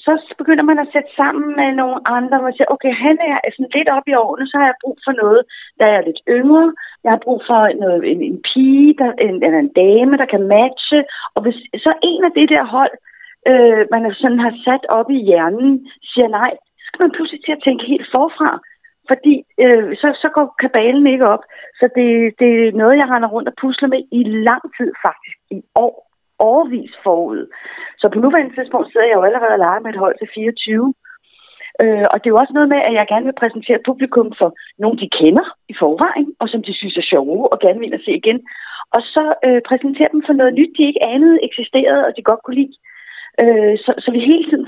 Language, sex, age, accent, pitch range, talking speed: Danish, female, 40-59, native, 230-295 Hz, 225 wpm